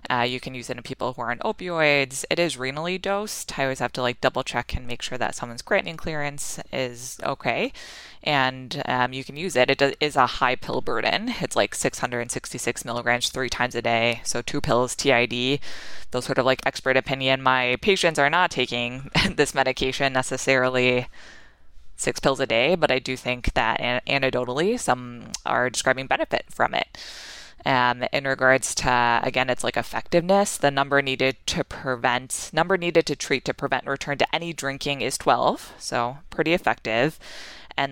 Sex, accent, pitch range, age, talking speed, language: female, American, 125-150 Hz, 20-39, 180 wpm, English